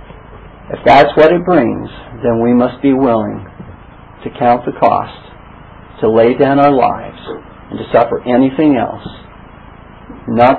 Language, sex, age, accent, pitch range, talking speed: English, male, 50-69, American, 120-155 Hz, 140 wpm